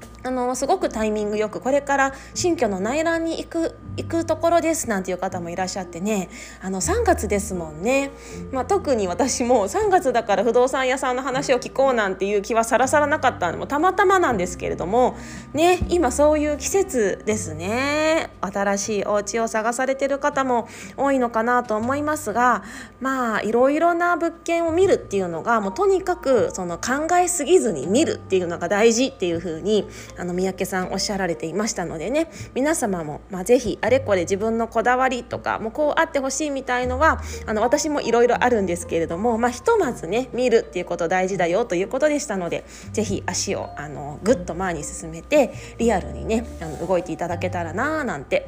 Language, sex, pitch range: Japanese, female, 190-275 Hz